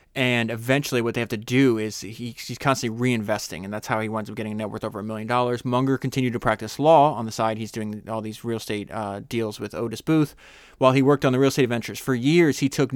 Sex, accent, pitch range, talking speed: male, American, 110-130 Hz, 265 wpm